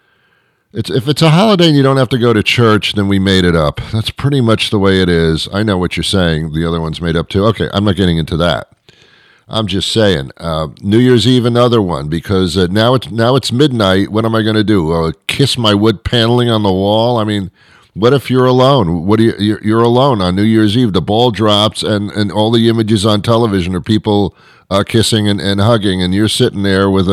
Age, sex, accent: 50-69, male, American